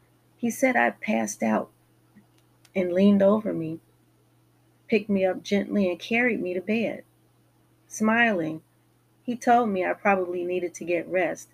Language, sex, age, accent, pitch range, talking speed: English, female, 30-49, American, 165-200 Hz, 145 wpm